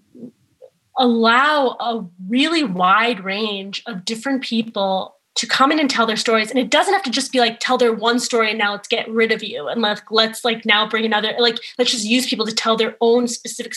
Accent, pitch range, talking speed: American, 220-260 Hz, 220 wpm